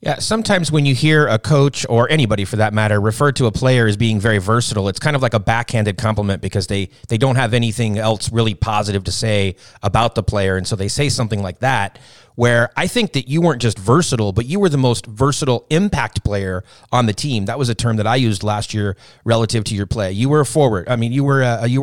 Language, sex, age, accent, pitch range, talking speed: English, male, 30-49, American, 110-140 Hz, 240 wpm